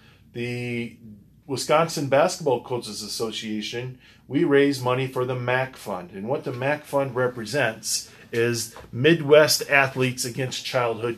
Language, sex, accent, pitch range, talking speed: English, male, American, 115-135 Hz, 125 wpm